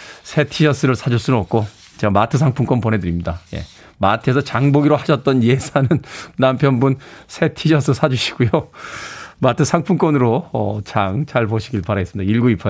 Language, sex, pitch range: Korean, male, 115-170 Hz